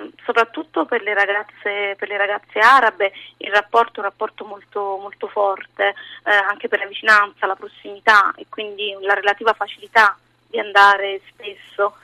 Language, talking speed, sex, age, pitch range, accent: Italian, 155 wpm, female, 30-49, 195-215 Hz, native